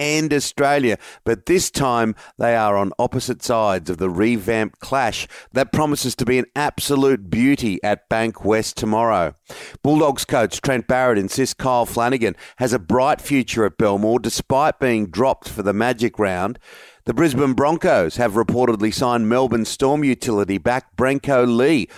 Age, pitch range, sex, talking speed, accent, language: 40-59, 115-135 Hz, male, 155 wpm, Australian, English